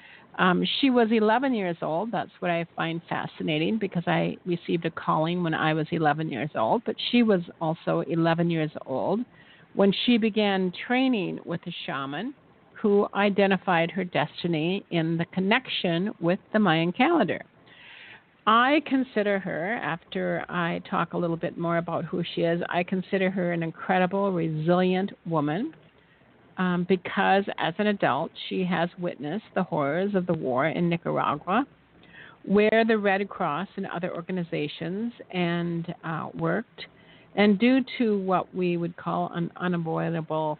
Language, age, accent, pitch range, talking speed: English, 50-69, American, 170-205 Hz, 150 wpm